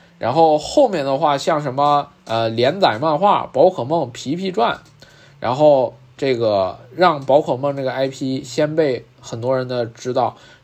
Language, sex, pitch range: Chinese, male, 130-170 Hz